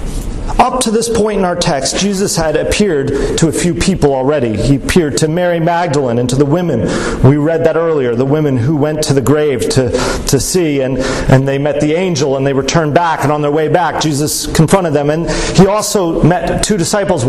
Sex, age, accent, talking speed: male, 40-59, American, 220 wpm